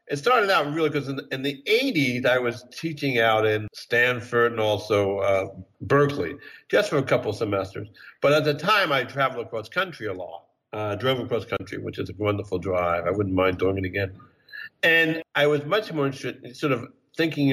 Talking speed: 205 wpm